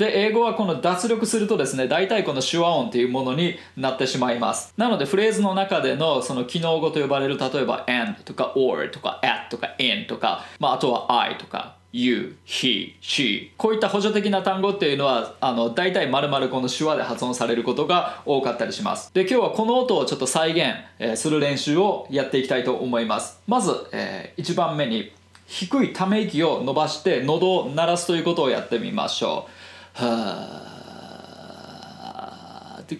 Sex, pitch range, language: male, 130-200 Hz, Japanese